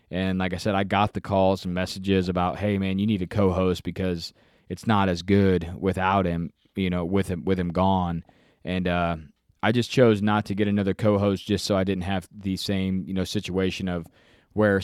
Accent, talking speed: American, 215 wpm